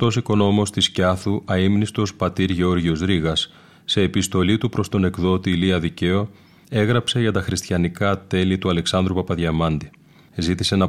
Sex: male